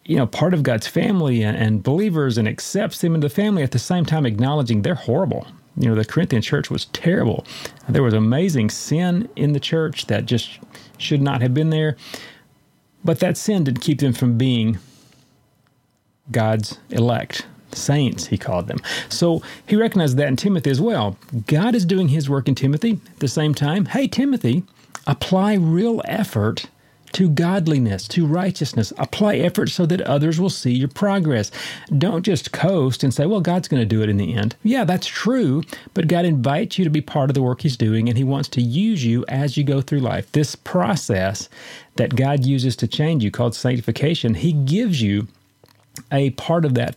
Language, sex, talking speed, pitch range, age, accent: English, male, 195 wpm, 120-175 Hz, 40-59, American